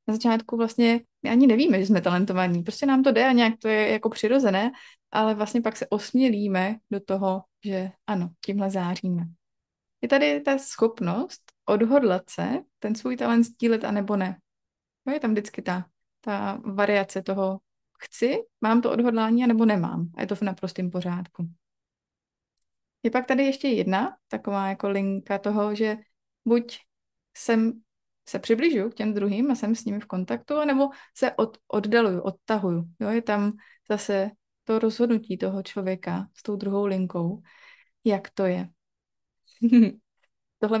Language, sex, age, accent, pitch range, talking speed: Czech, female, 20-39, native, 195-240 Hz, 155 wpm